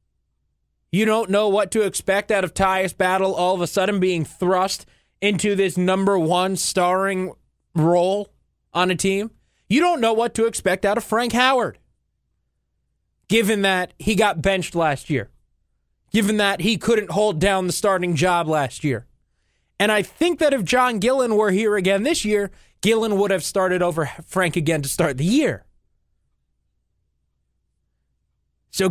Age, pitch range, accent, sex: 20-39, 170-215 Hz, American, male